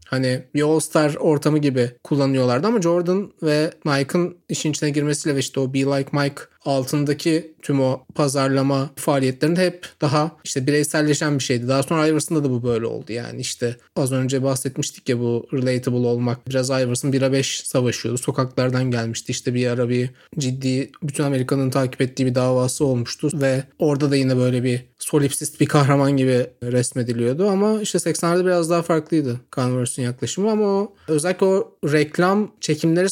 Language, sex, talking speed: Turkish, male, 165 wpm